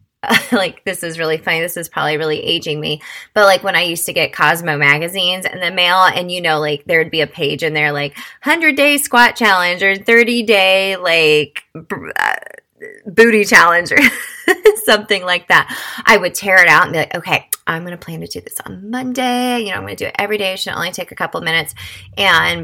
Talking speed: 225 wpm